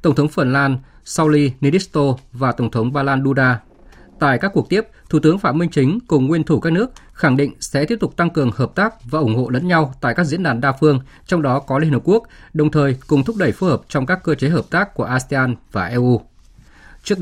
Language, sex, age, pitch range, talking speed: Vietnamese, male, 20-39, 125-165 Hz, 245 wpm